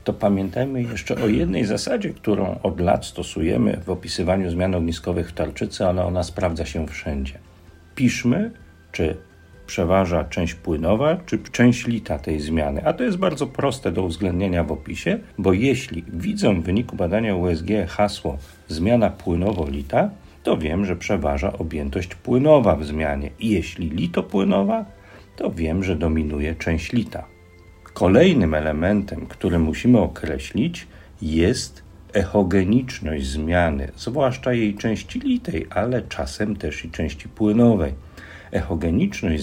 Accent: native